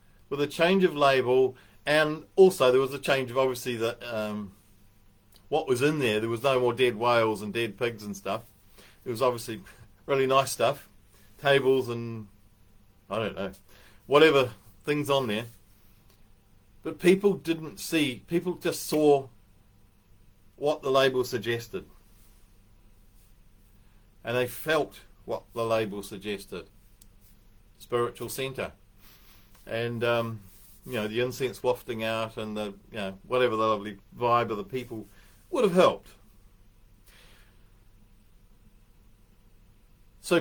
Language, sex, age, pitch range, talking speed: English, male, 40-59, 100-130 Hz, 130 wpm